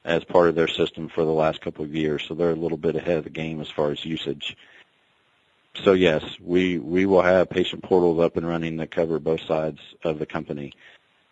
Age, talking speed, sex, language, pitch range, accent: 40-59, 225 wpm, male, English, 85-95 Hz, American